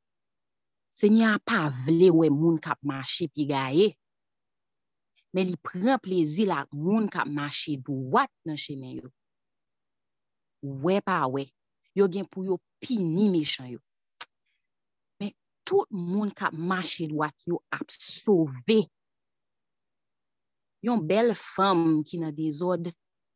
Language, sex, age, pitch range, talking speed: French, female, 30-49, 150-210 Hz, 120 wpm